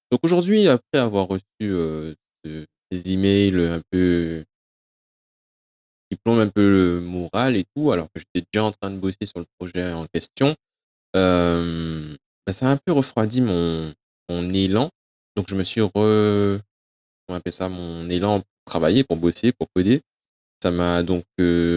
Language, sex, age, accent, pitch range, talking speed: French, male, 20-39, French, 85-110 Hz, 170 wpm